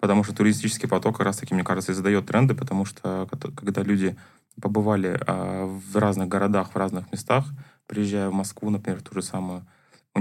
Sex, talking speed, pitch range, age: male, 180 wpm, 95-110 Hz, 20-39